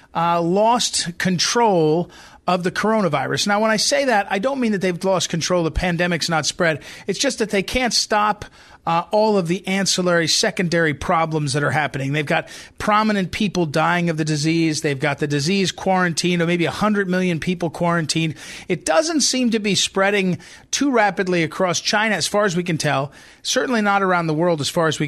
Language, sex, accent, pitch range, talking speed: English, male, American, 155-195 Hz, 195 wpm